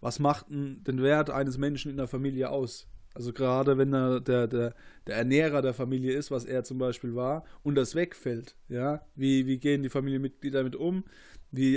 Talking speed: 200 wpm